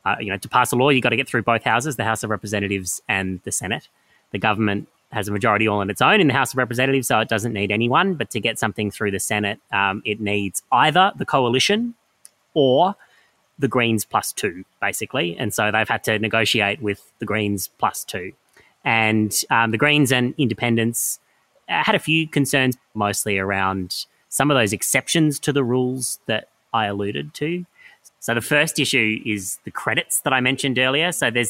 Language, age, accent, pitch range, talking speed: English, 20-39, Australian, 100-130 Hz, 200 wpm